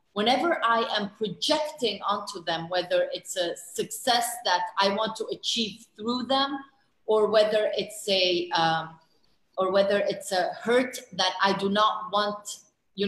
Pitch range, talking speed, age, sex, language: 190-235 Hz, 150 wpm, 30-49, female, Arabic